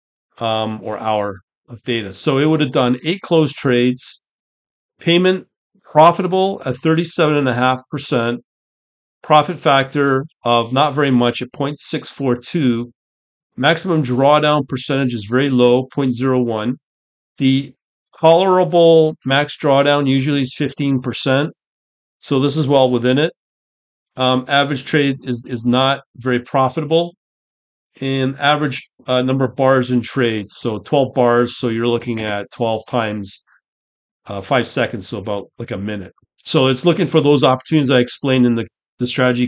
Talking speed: 135 wpm